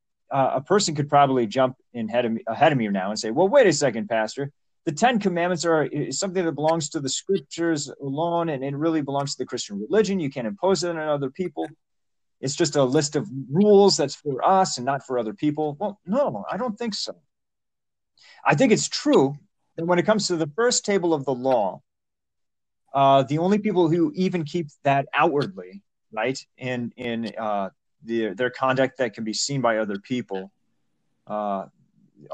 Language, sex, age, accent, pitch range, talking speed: English, male, 30-49, American, 125-170 Hz, 200 wpm